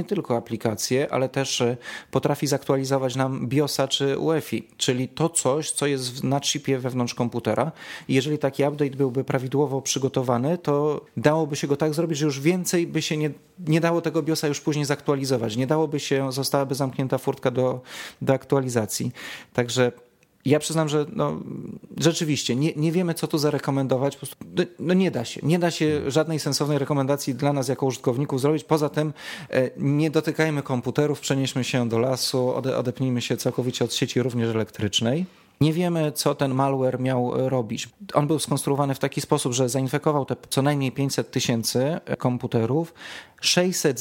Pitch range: 130-150 Hz